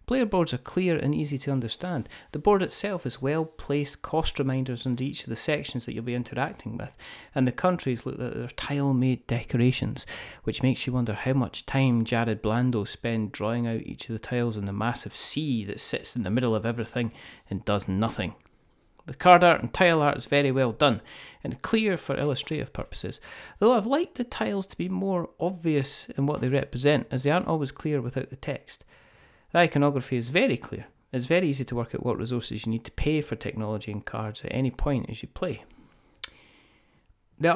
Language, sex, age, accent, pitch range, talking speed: English, male, 30-49, British, 115-155 Hz, 205 wpm